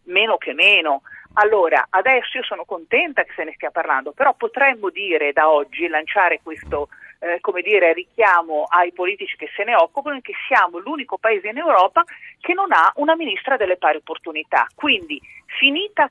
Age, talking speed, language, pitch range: 40-59, 170 wpm, Italian, 175-300 Hz